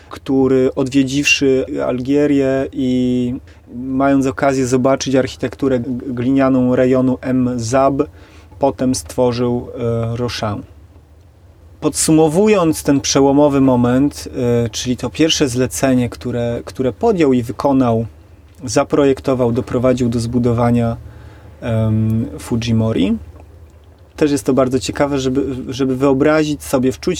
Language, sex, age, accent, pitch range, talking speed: Polish, male, 30-49, native, 115-135 Hz, 100 wpm